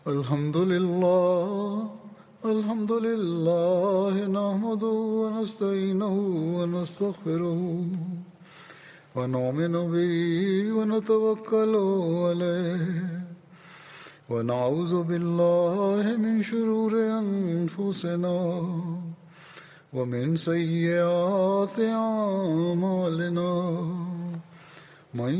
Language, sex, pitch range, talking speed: Swahili, male, 170-215 Hz, 55 wpm